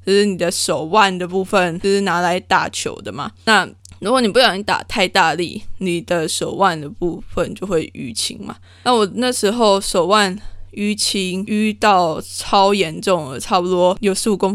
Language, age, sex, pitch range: Chinese, 20-39, female, 160-205 Hz